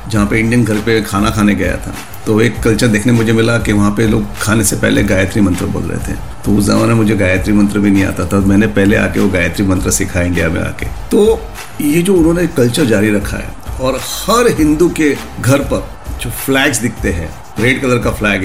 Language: Hindi